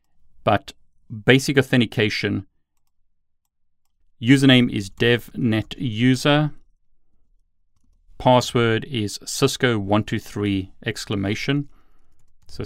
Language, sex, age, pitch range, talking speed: English, male, 40-59, 100-130 Hz, 45 wpm